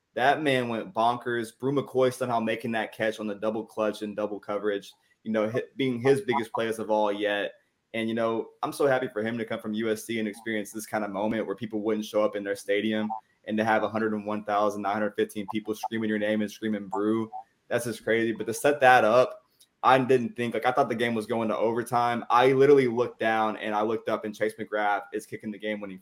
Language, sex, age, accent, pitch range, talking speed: English, male, 20-39, American, 105-115 Hz, 230 wpm